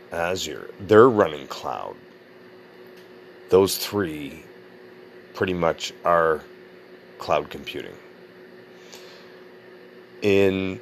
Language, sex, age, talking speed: English, male, 40-59, 65 wpm